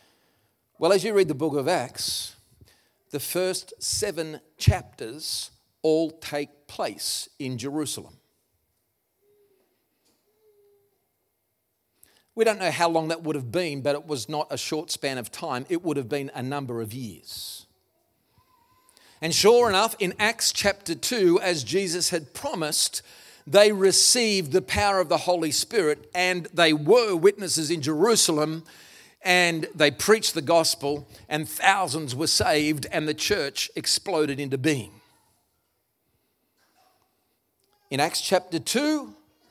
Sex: male